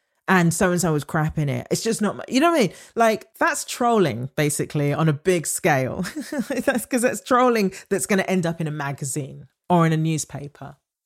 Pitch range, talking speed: 150-220 Hz, 210 wpm